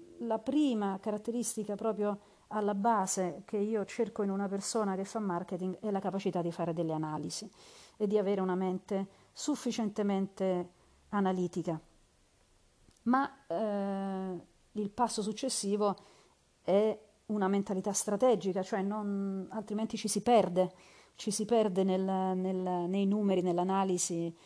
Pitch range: 185-225 Hz